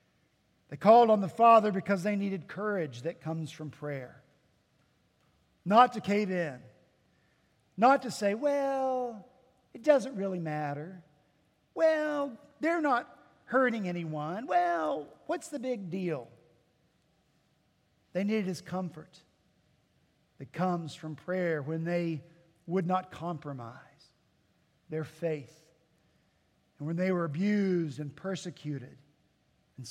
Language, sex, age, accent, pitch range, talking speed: English, male, 50-69, American, 155-210 Hz, 115 wpm